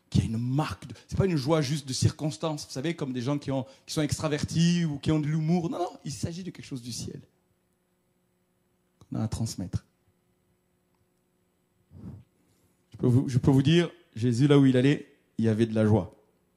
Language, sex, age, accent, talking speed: French, male, 40-59, French, 210 wpm